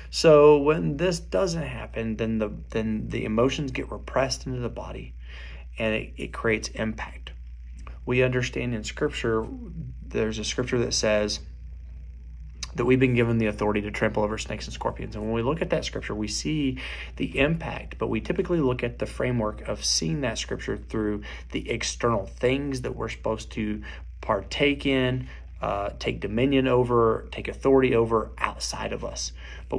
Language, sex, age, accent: English, male, 30-49, American